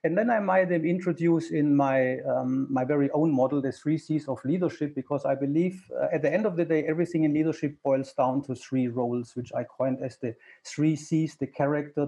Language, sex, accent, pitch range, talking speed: English, male, German, 130-160 Hz, 225 wpm